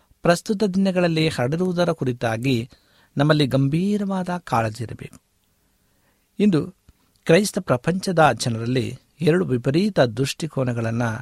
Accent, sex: native, male